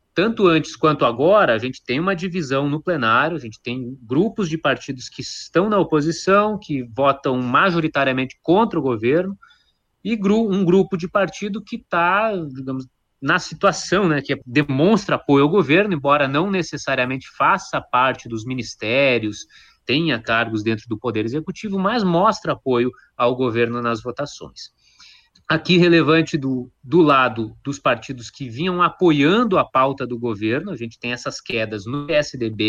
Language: Portuguese